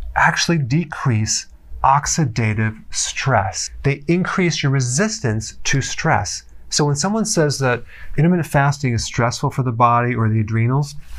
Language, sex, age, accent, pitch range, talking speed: English, male, 30-49, American, 110-140 Hz, 135 wpm